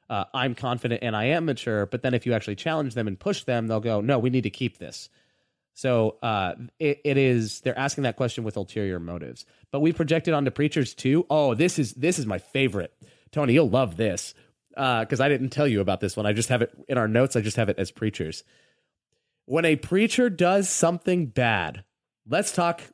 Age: 30-49